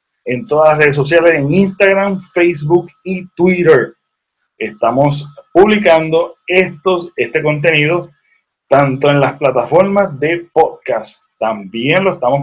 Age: 30-49